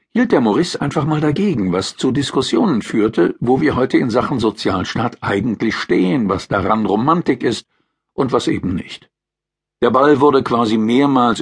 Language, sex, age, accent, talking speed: German, male, 50-69, German, 165 wpm